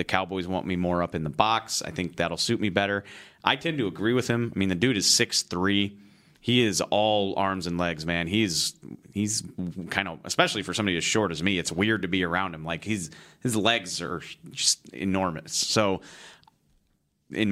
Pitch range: 90-110 Hz